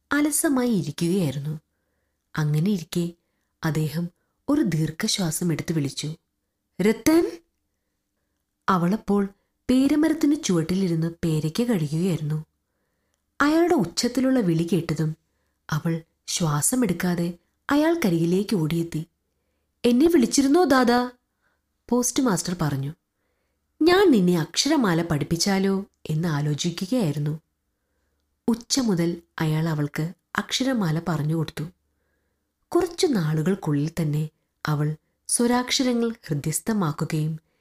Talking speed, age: 70 wpm, 30-49